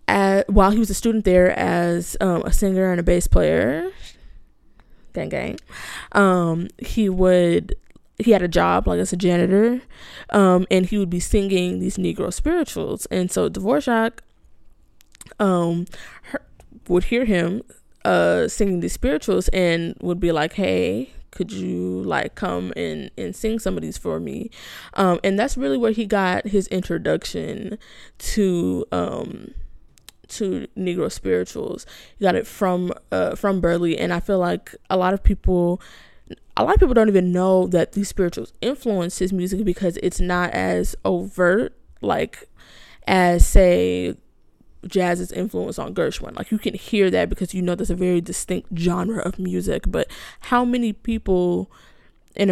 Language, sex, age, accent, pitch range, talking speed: English, female, 20-39, American, 175-200 Hz, 160 wpm